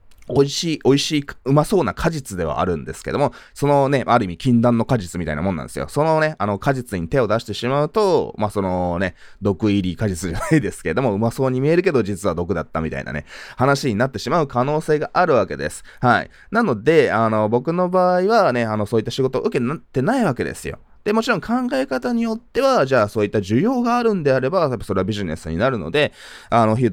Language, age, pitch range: Japanese, 20-39, 95-150 Hz